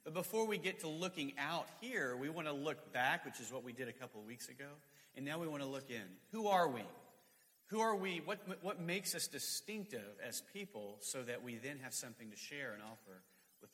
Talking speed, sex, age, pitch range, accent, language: 235 wpm, male, 40-59, 115-155 Hz, American, English